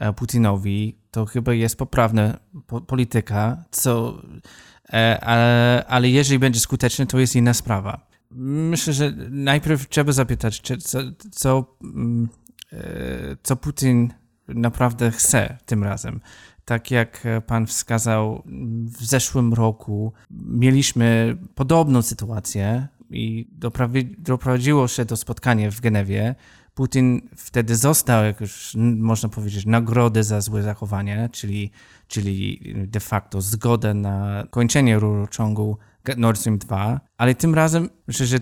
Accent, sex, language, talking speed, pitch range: native, male, Polish, 115 wpm, 110-130 Hz